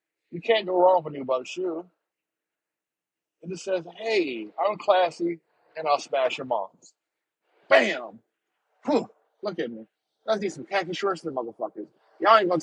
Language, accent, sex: English, American, male